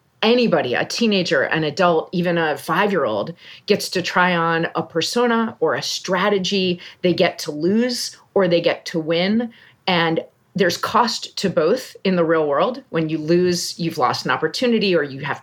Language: English